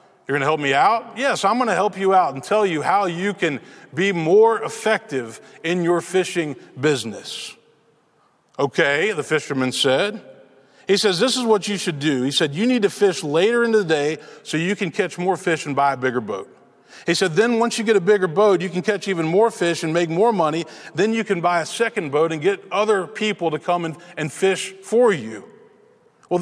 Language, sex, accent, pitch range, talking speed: English, male, American, 160-215 Hz, 220 wpm